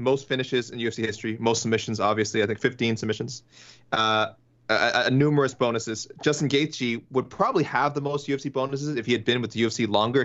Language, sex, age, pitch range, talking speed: English, male, 30-49, 110-135 Hz, 200 wpm